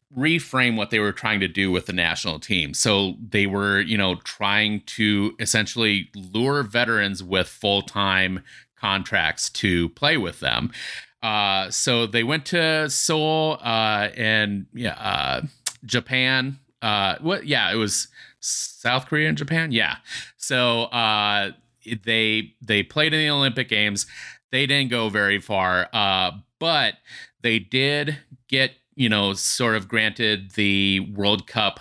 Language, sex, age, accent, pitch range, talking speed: English, male, 30-49, American, 100-120 Hz, 145 wpm